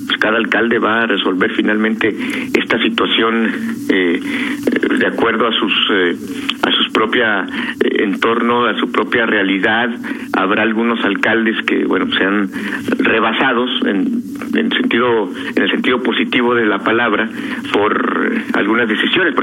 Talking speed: 135 wpm